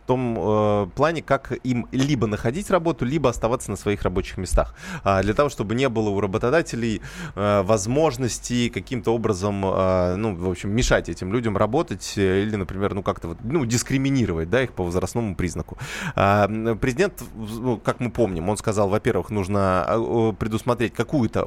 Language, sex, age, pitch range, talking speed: Russian, male, 20-39, 100-125 Hz, 170 wpm